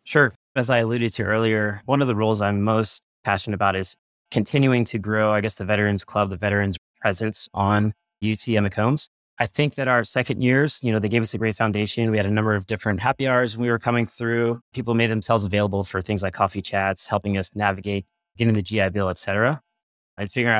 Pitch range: 105-125 Hz